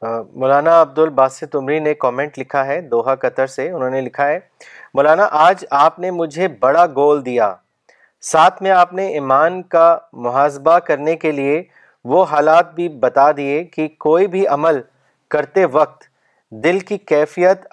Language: Urdu